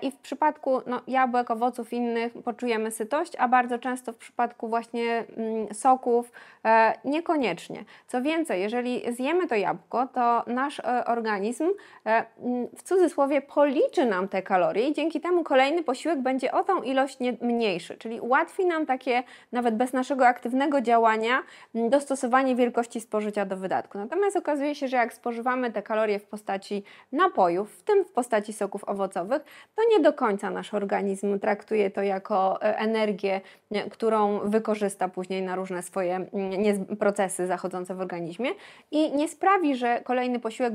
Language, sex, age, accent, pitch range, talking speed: Polish, female, 20-39, native, 205-260 Hz, 145 wpm